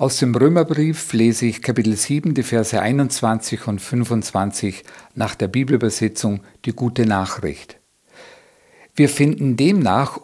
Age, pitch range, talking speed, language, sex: 50-69, 120-155 Hz, 125 wpm, German, male